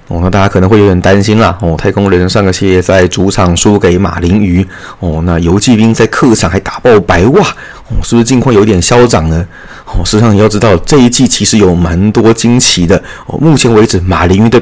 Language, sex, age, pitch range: Chinese, male, 20-39, 90-100 Hz